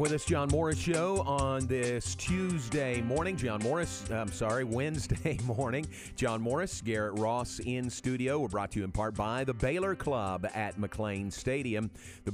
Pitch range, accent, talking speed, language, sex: 95-125 Hz, American, 170 wpm, English, male